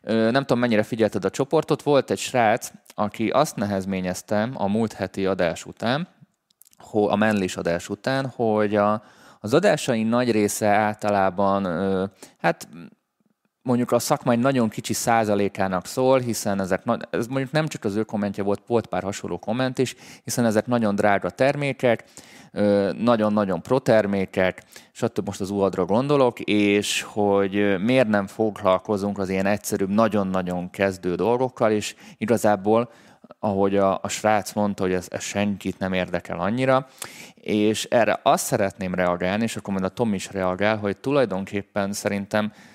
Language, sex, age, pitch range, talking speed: Hungarian, male, 20-39, 95-115 Hz, 145 wpm